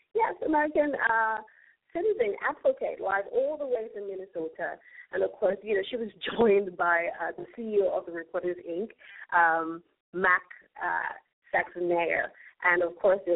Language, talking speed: English, 155 wpm